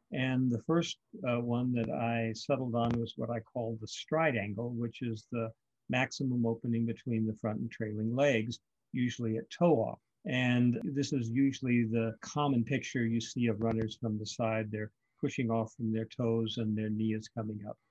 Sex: male